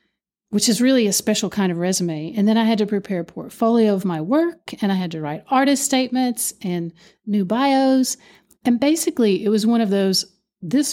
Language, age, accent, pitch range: English, 40-59, American, 195-235 Hz